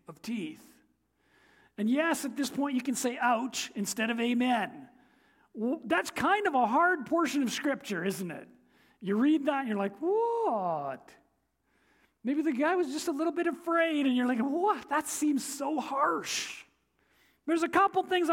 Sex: male